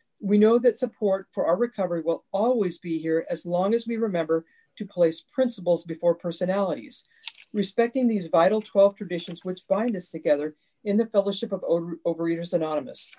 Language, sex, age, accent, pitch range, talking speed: English, female, 50-69, American, 170-220 Hz, 165 wpm